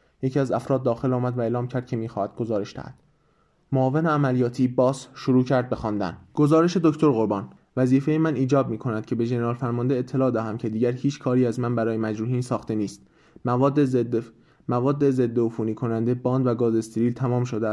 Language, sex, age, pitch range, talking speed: Persian, male, 20-39, 115-130 Hz, 185 wpm